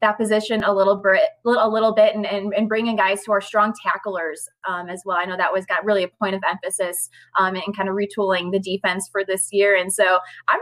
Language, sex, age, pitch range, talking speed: English, female, 20-39, 185-215 Hz, 245 wpm